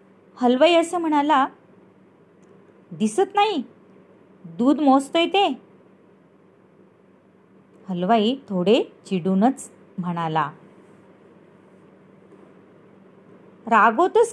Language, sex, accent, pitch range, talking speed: Marathi, female, native, 190-270 Hz, 55 wpm